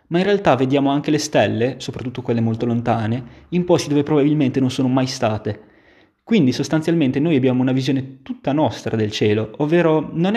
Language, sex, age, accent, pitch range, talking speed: Italian, male, 20-39, native, 115-160 Hz, 180 wpm